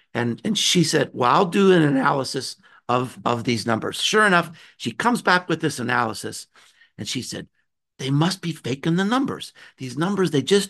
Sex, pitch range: male, 130-185 Hz